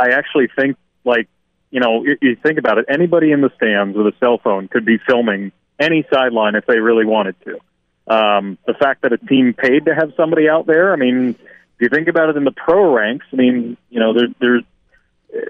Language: English